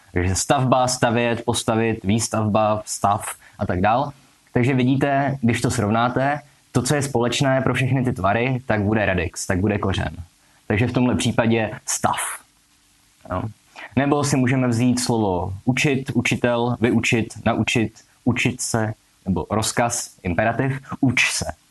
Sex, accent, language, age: male, native, Czech, 20-39